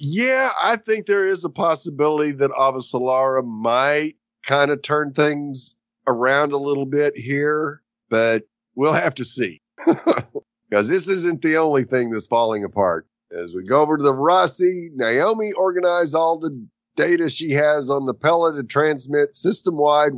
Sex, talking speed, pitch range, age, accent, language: male, 160 wpm, 140-180 Hz, 50-69, American, English